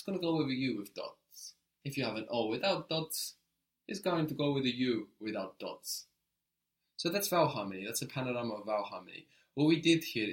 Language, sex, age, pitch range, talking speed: English, male, 20-39, 105-125 Hz, 225 wpm